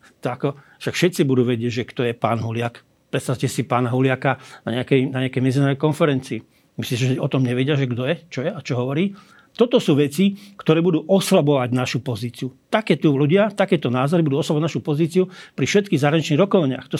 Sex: male